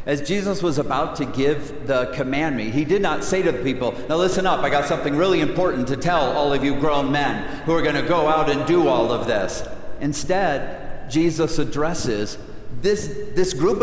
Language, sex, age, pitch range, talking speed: English, male, 50-69, 145-175 Hz, 200 wpm